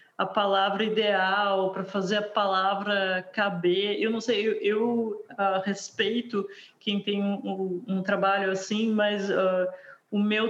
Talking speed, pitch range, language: 150 wpm, 190-220 Hz, Portuguese